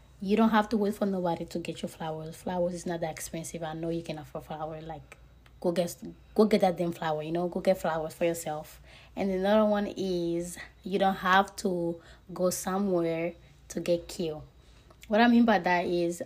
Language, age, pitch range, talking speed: English, 20-39, 165-190 Hz, 205 wpm